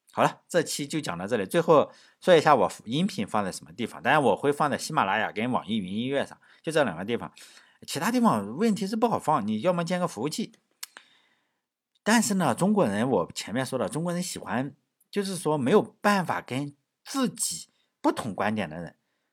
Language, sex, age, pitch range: Chinese, male, 50-69, 135-220 Hz